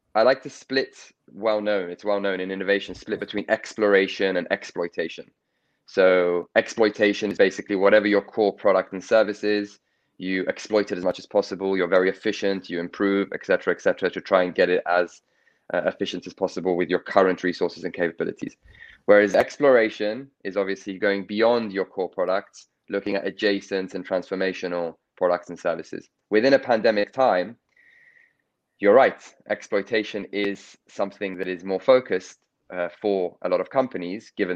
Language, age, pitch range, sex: English, 20-39, 90-110 Hz, male